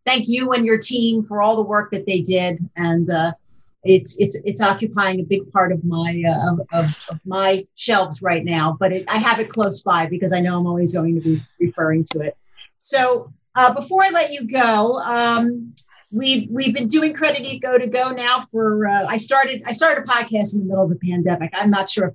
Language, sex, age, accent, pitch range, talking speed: English, female, 40-59, American, 180-230 Hz, 225 wpm